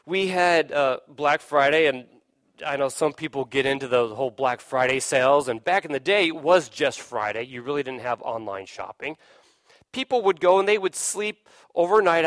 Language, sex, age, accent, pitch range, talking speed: English, male, 40-59, American, 145-220 Hz, 195 wpm